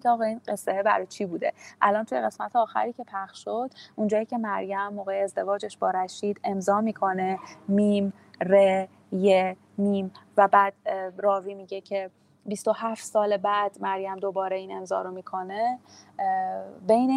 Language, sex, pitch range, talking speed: Persian, female, 195-225 Hz, 145 wpm